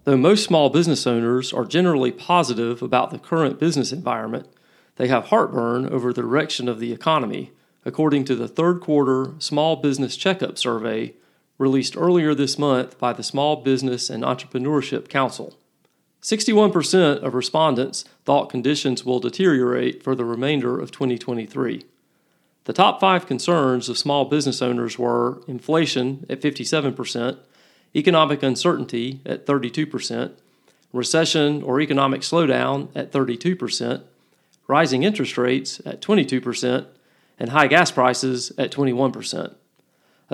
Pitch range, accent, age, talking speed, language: 125-150 Hz, American, 40-59, 130 wpm, English